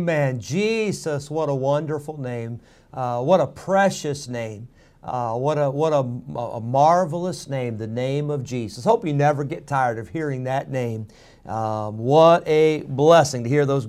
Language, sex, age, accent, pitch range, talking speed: English, male, 50-69, American, 140-190 Hz, 155 wpm